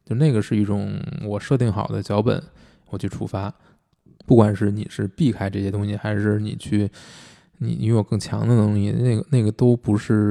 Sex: male